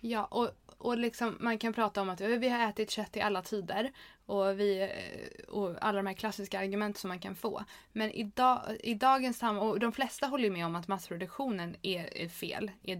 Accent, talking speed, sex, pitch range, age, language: native, 210 wpm, female, 175-210 Hz, 20-39, Swedish